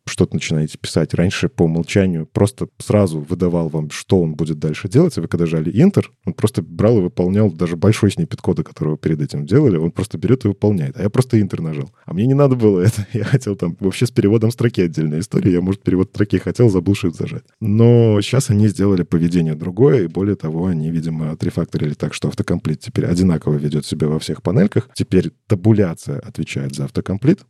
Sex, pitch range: male, 80-110 Hz